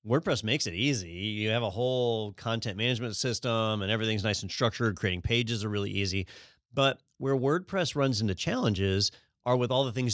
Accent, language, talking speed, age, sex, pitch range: American, English, 190 wpm, 30-49, male, 100-125 Hz